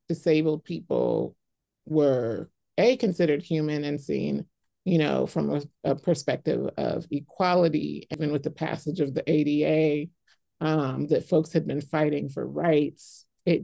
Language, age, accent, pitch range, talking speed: English, 30-49, American, 150-175 Hz, 140 wpm